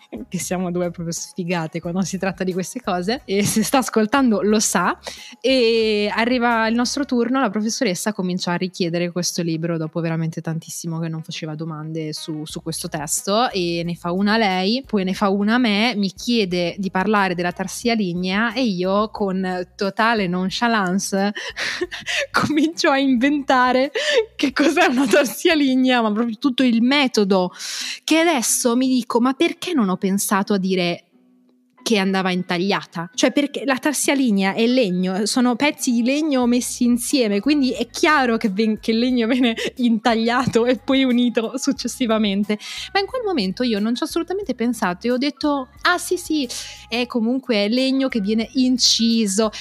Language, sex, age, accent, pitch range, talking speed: Italian, female, 20-39, native, 190-255 Hz, 170 wpm